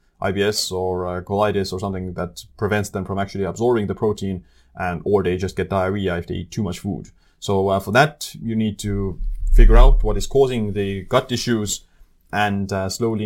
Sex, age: male, 20-39